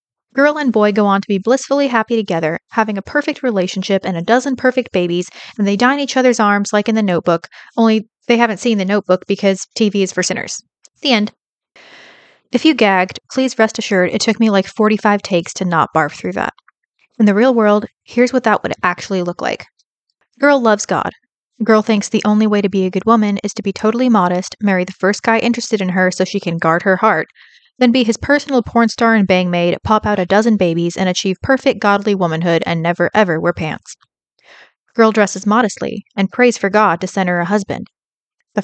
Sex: female